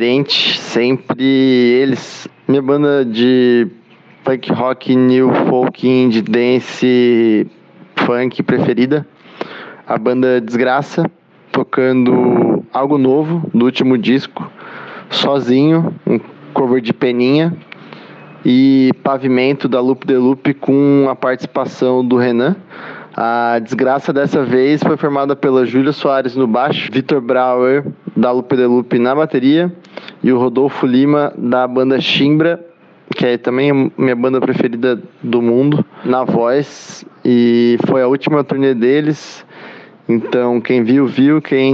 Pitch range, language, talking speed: 120-140 Hz, Portuguese, 125 wpm